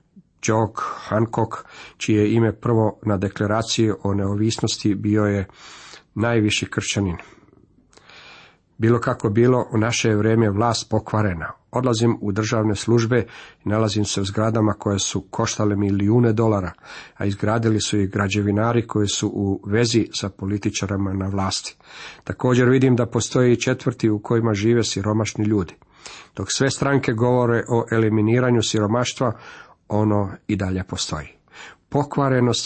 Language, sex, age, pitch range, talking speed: Croatian, male, 50-69, 105-120 Hz, 130 wpm